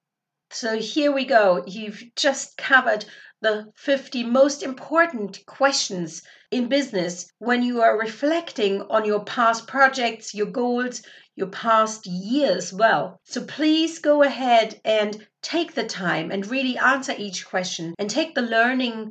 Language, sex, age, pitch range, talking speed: English, female, 50-69, 195-255 Hz, 140 wpm